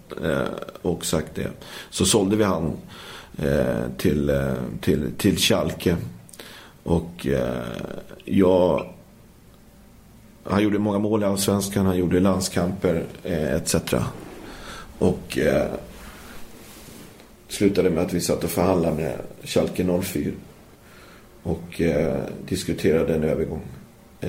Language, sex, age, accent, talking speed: Swedish, male, 40-59, native, 100 wpm